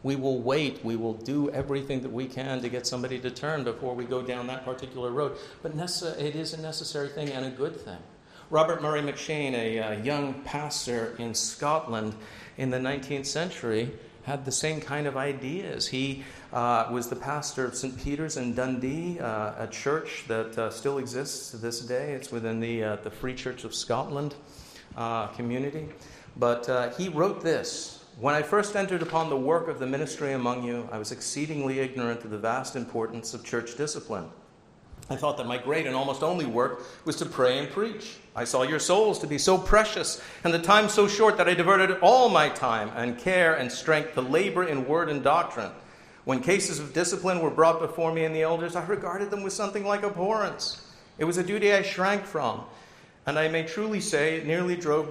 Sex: male